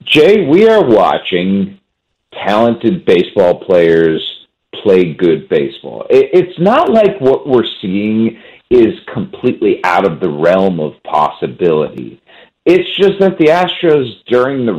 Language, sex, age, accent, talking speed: English, male, 50-69, American, 125 wpm